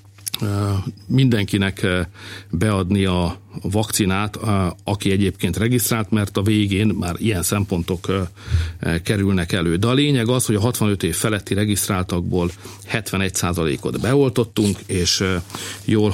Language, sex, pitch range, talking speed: Hungarian, male, 90-110 Hz, 110 wpm